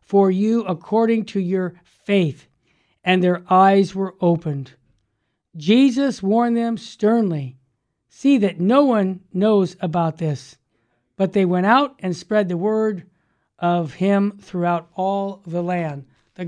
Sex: male